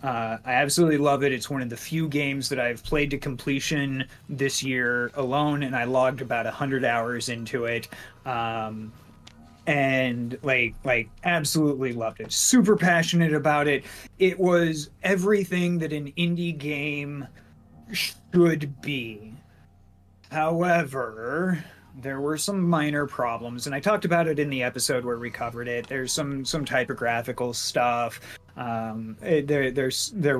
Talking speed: 150 wpm